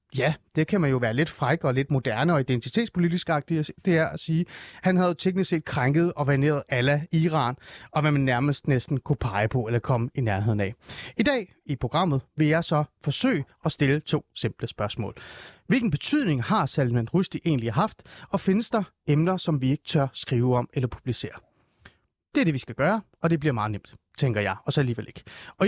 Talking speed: 210 wpm